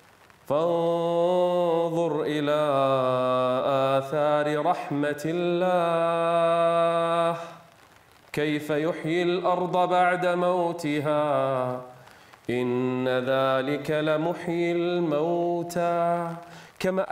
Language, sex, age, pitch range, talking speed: Arabic, male, 30-49, 135-185 Hz, 55 wpm